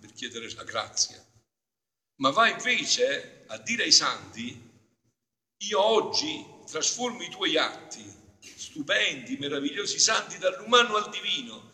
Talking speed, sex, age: 110 wpm, male, 50-69